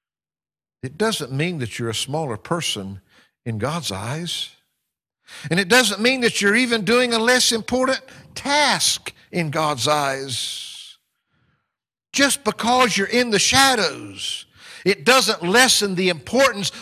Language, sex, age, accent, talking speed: English, male, 60-79, American, 130 wpm